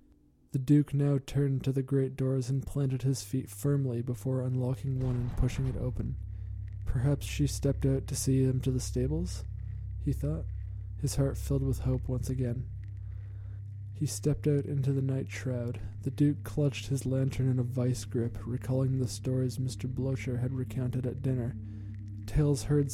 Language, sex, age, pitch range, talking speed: English, male, 20-39, 115-135 Hz, 175 wpm